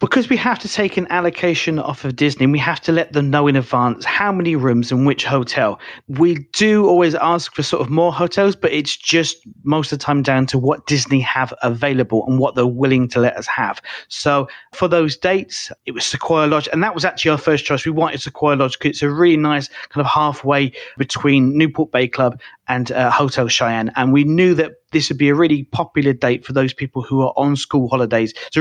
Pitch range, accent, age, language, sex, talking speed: 130-160 Hz, British, 30-49, English, male, 230 wpm